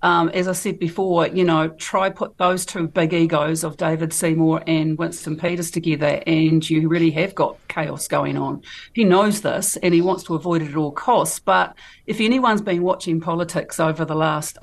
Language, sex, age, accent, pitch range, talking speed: English, female, 50-69, Australian, 160-185 Hz, 200 wpm